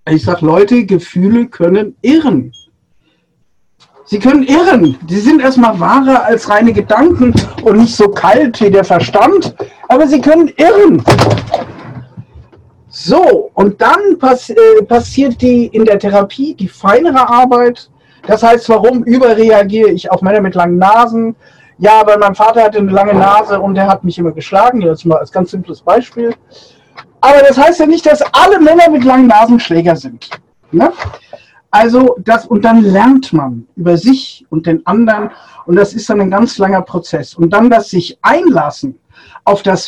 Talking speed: 165 wpm